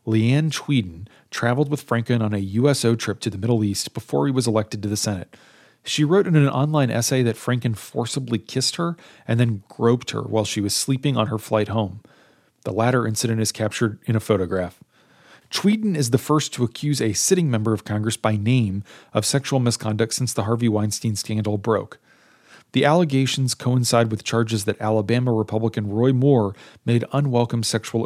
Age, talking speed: 40-59, 185 wpm